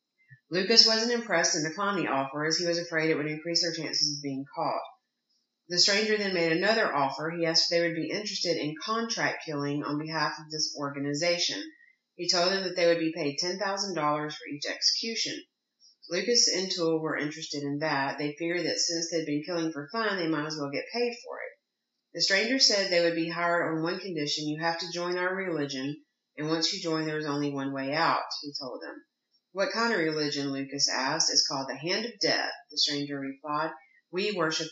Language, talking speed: English, 210 wpm